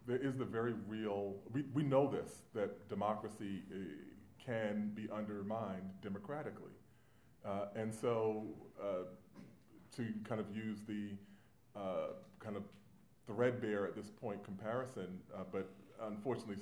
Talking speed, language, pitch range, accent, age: 130 wpm, English, 105-135 Hz, American, 30-49